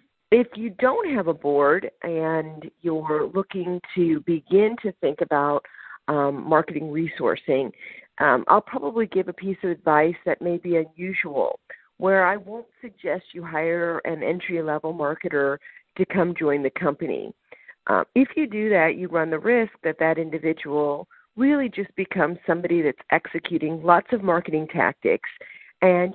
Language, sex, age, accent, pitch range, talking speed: English, female, 50-69, American, 155-195 Hz, 150 wpm